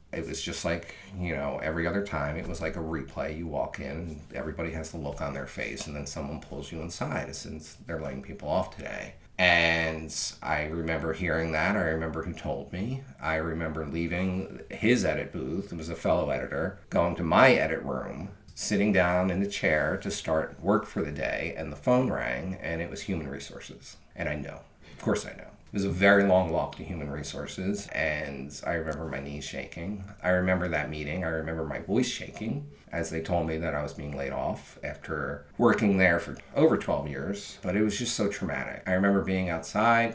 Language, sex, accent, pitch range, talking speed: English, male, American, 75-90 Hz, 210 wpm